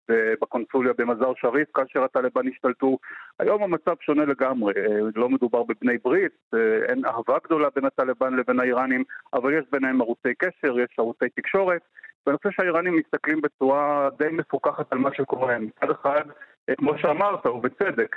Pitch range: 125-155 Hz